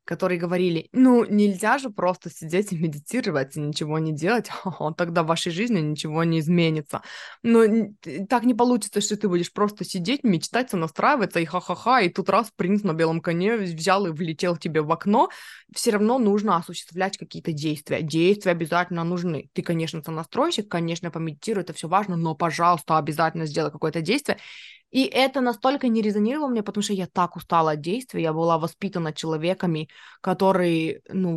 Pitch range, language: 165-210 Hz, Russian